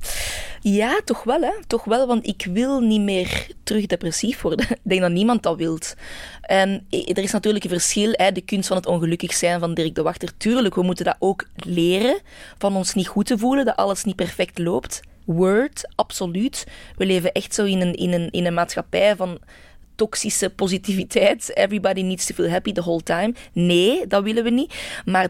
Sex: female